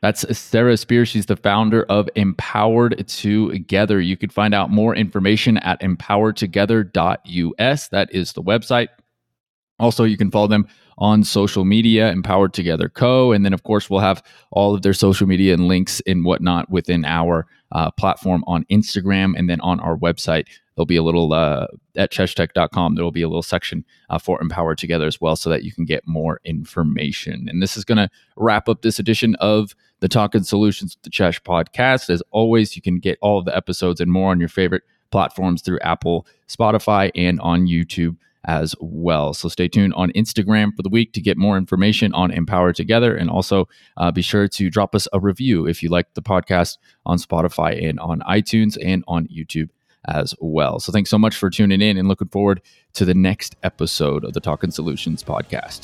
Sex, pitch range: male, 85-105 Hz